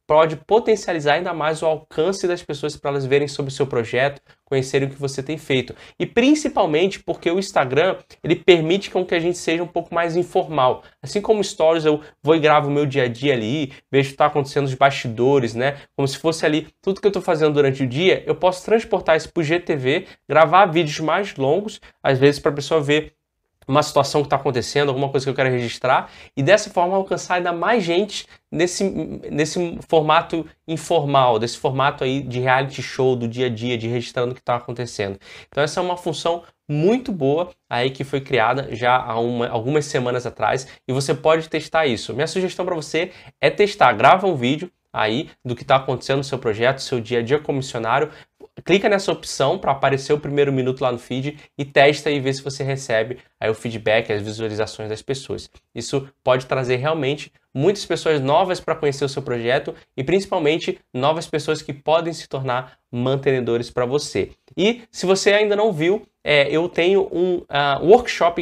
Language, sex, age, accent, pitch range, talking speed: Portuguese, male, 20-39, Brazilian, 135-170 Hz, 200 wpm